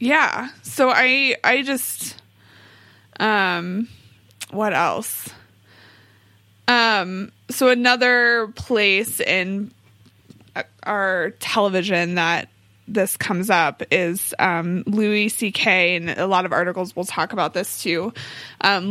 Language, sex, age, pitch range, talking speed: English, female, 20-39, 170-215 Hz, 110 wpm